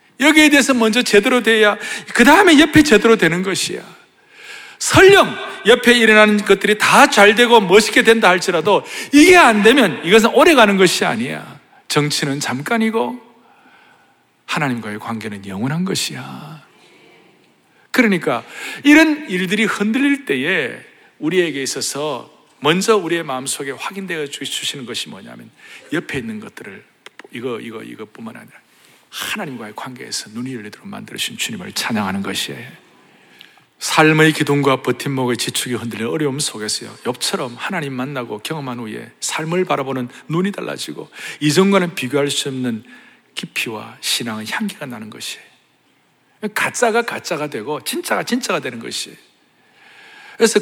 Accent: native